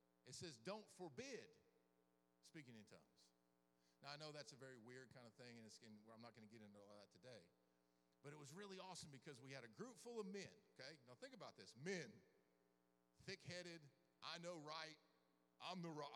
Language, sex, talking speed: English, male, 205 wpm